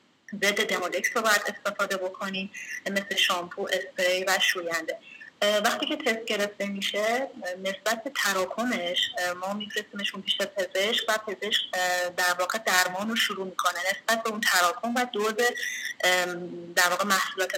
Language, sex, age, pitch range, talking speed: Persian, female, 30-49, 185-220 Hz, 140 wpm